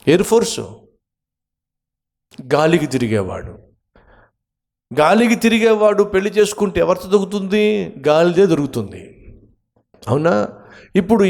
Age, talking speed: 50-69, 75 wpm